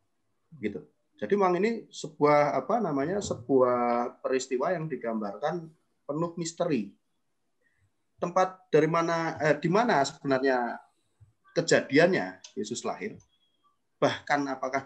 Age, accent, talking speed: 30-49, native, 100 wpm